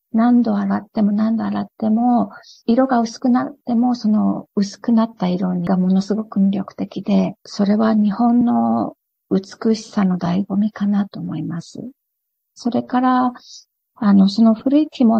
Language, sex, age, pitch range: Japanese, female, 50-69, 195-240 Hz